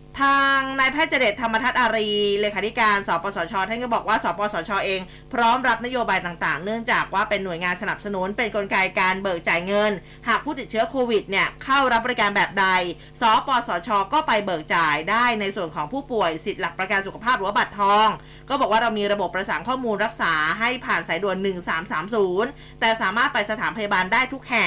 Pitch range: 190-240 Hz